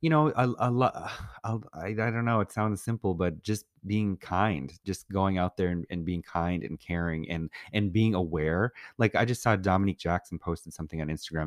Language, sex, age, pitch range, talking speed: English, male, 30-49, 85-105 Hz, 205 wpm